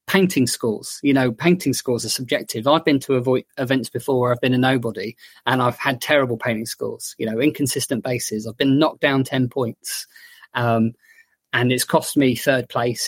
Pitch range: 125-155 Hz